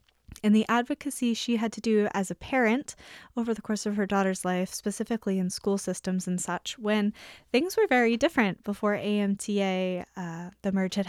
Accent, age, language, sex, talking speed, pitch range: American, 10-29, English, female, 185 wpm, 185-230 Hz